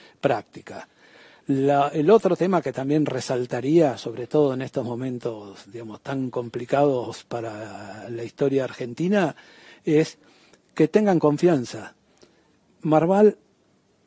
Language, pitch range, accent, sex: Spanish, 130-165 Hz, Argentinian, male